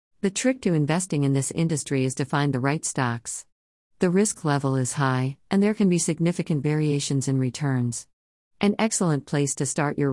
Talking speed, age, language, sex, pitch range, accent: 190 wpm, 50-69, English, female, 130-155 Hz, American